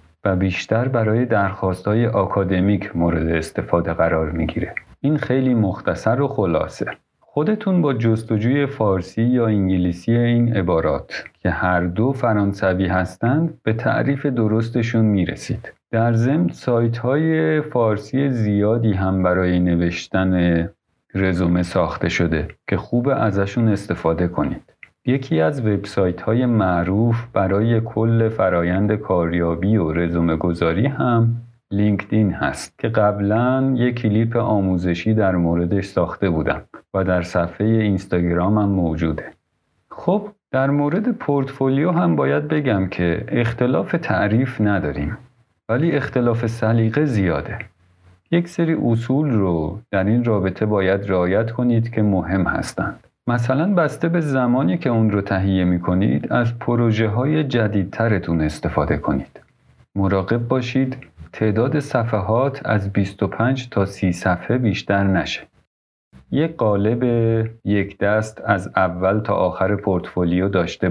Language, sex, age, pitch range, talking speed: Persian, male, 50-69, 95-120 Hz, 120 wpm